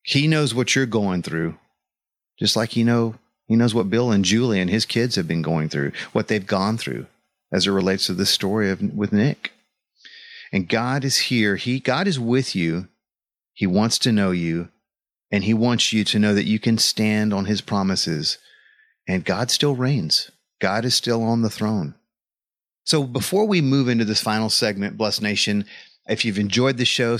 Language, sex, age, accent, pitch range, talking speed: English, male, 40-59, American, 100-125 Hz, 195 wpm